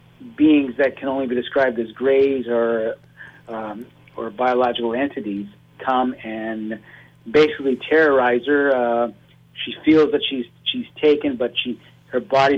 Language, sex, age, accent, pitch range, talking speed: English, male, 50-69, American, 125-150 Hz, 140 wpm